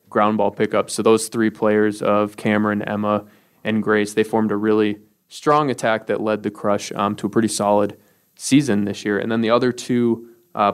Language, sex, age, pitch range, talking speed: English, male, 20-39, 105-120 Hz, 200 wpm